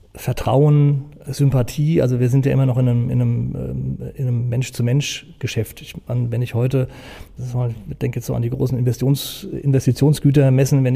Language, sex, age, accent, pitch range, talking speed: German, male, 40-59, German, 120-135 Hz, 140 wpm